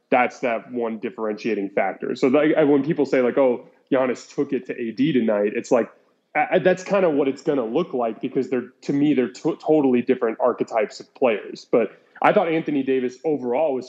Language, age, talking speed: English, 20-39, 210 wpm